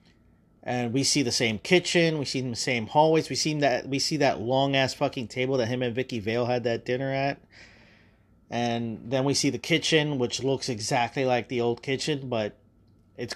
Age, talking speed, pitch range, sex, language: 30-49, 200 wpm, 115-140 Hz, male, English